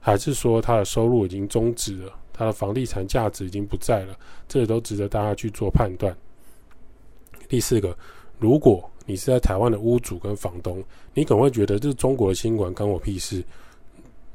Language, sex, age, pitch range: Chinese, male, 20-39, 95-120 Hz